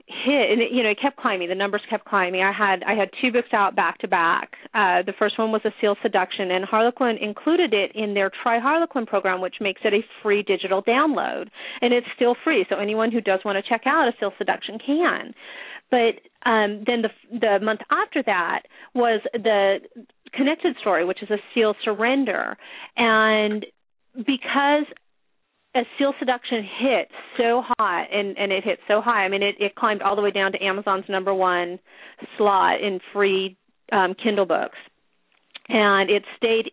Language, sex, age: English, female, 40-59